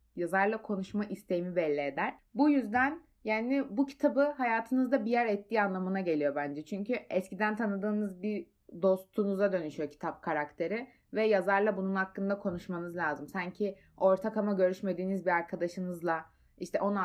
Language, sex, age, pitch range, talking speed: Turkish, female, 20-39, 175-260 Hz, 140 wpm